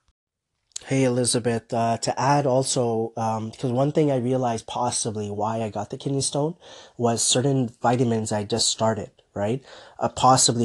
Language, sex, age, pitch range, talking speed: English, male, 20-39, 105-120 Hz, 160 wpm